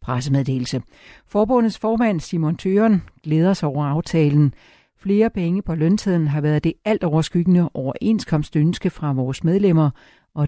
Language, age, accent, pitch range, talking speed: Danish, 60-79, native, 150-190 Hz, 145 wpm